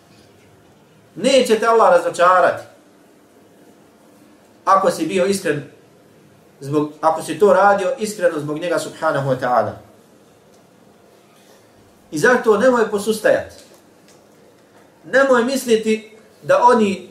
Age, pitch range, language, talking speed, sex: 40-59, 140-210 Hz, English, 100 wpm, male